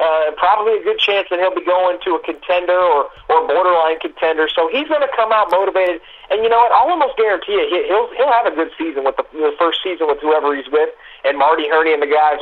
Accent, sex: American, male